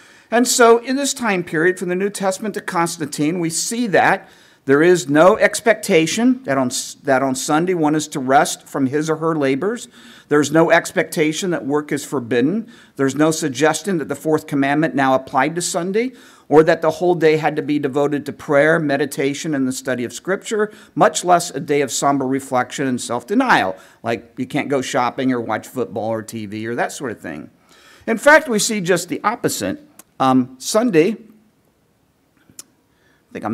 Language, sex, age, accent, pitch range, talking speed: English, male, 50-69, American, 140-200 Hz, 185 wpm